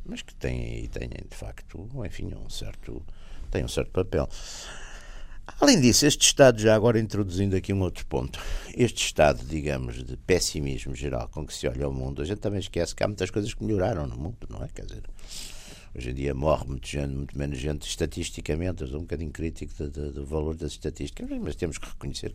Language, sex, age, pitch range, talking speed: Portuguese, male, 60-79, 65-95 Hz, 205 wpm